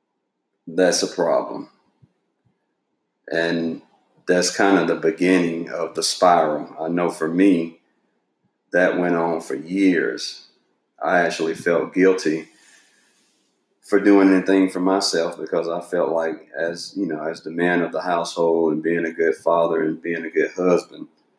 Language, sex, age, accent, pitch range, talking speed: English, male, 40-59, American, 80-90 Hz, 150 wpm